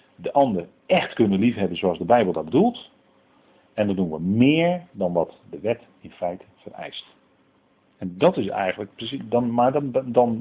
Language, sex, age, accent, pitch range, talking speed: Dutch, male, 40-59, Dutch, 100-135 Hz, 180 wpm